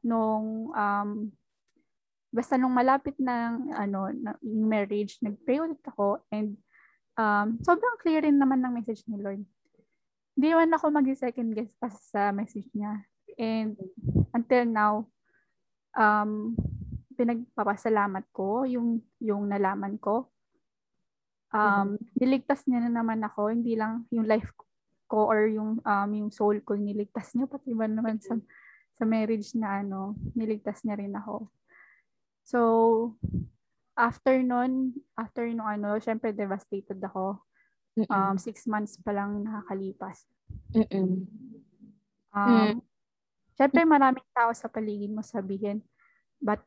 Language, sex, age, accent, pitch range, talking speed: English, female, 20-39, Filipino, 205-250 Hz, 120 wpm